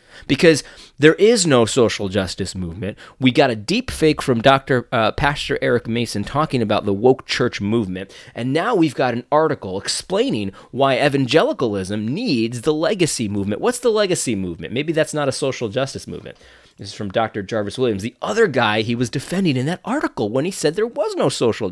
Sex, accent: male, American